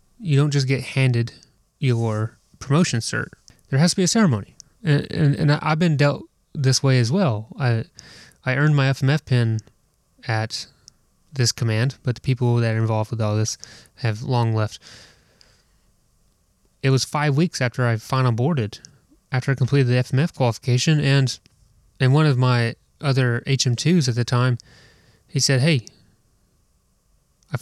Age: 20-39